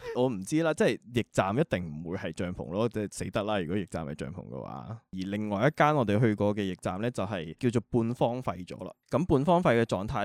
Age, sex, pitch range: 20-39, male, 95-120 Hz